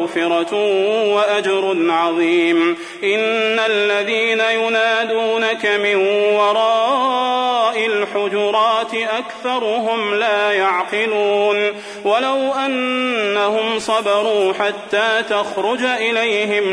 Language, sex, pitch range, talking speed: Arabic, male, 195-225 Hz, 65 wpm